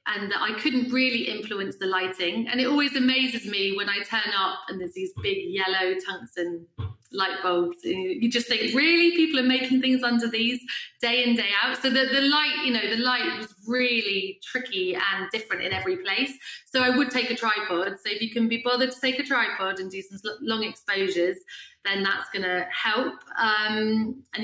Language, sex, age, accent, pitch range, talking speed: English, female, 30-49, British, 185-250 Hz, 200 wpm